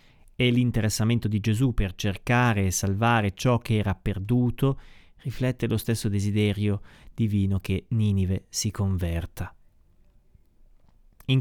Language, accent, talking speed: Italian, native, 115 wpm